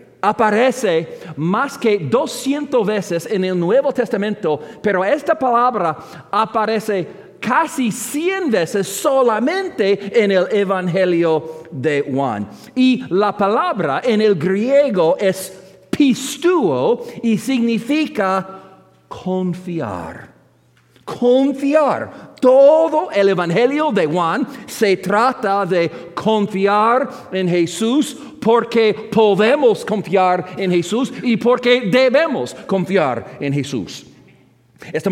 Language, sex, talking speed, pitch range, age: English, male, 95 wpm, 180-245 Hz, 50-69